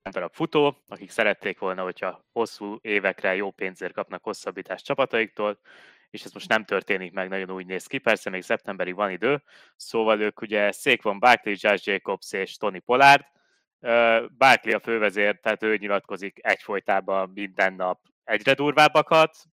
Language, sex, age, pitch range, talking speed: Hungarian, male, 20-39, 100-115 Hz, 155 wpm